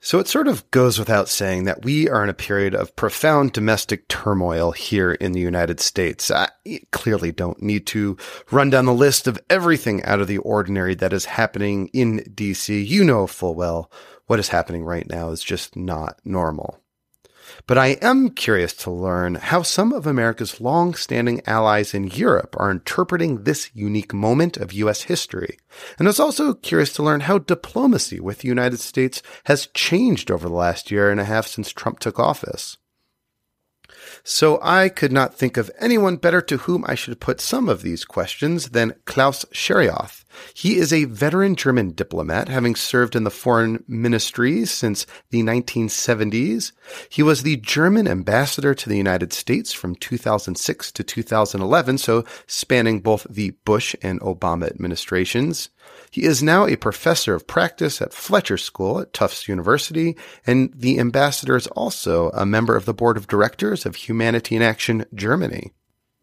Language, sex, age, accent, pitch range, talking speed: English, male, 30-49, American, 100-140 Hz, 170 wpm